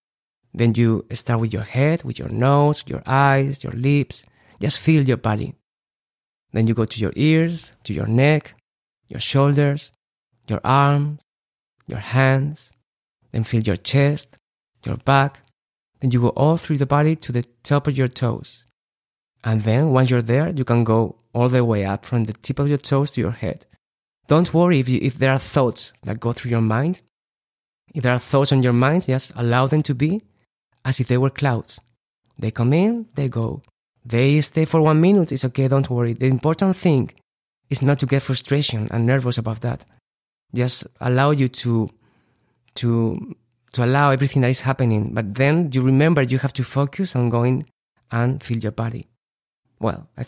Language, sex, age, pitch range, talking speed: English, male, 30-49, 120-140 Hz, 185 wpm